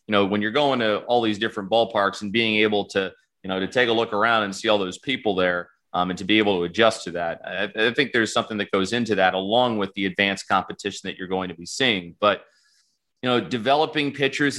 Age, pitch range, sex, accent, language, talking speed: 30-49, 95-115 Hz, male, American, English, 250 wpm